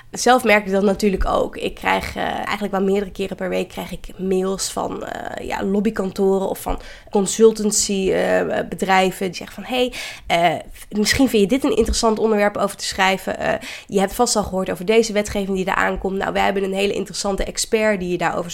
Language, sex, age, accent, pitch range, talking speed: Dutch, female, 20-39, Dutch, 190-220 Hz, 205 wpm